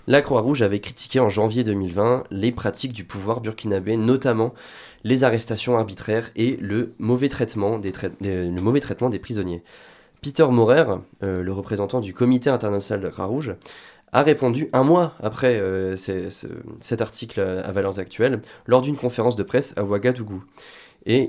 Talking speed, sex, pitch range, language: 170 wpm, male, 100-125 Hz, French